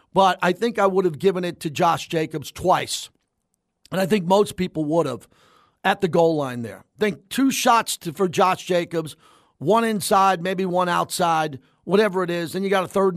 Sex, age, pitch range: male, 40-59, 165-200 Hz